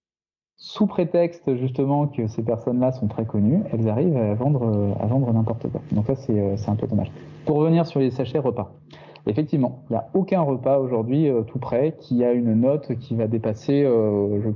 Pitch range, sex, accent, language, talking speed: 115-145 Hz, male, French, French, 195 wpm